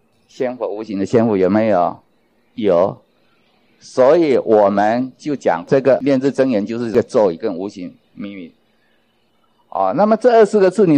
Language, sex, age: Chinese, male, 50-69